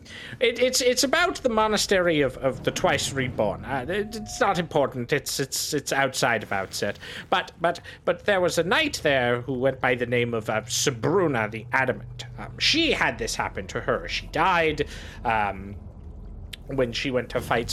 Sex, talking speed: male, 185 wpm